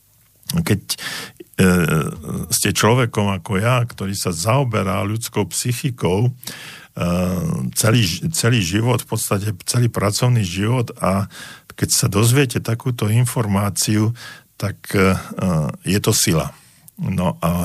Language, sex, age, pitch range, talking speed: Slovak, male, 50-69, 85-115 Hz, 115 wpm